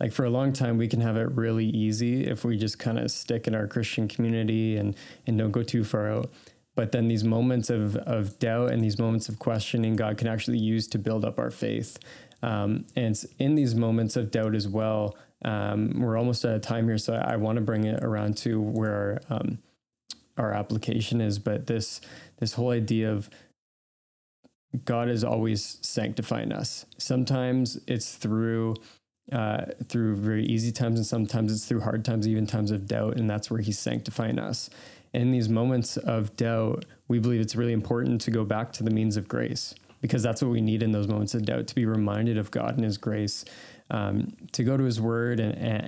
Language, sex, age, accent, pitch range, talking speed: English, male, 20-39, American, 110-120 Hz, 210 wpm